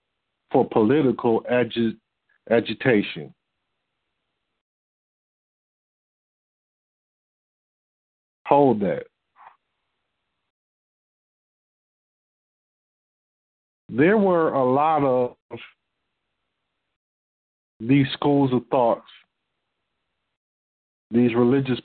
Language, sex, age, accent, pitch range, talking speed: English, male, 50-69, American, 115-150 Hz, 45 wpm